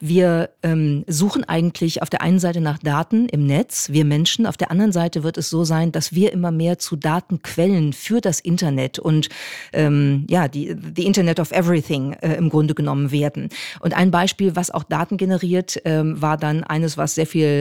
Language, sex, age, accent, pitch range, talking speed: German, female, 40-59, German, 155-185 Hz, 195 wpm